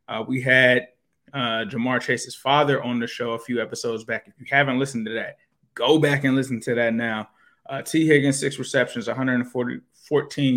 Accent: American